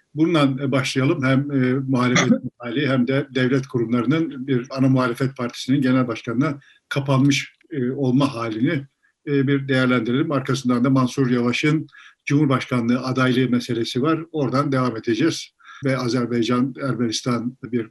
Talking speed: 115 wpm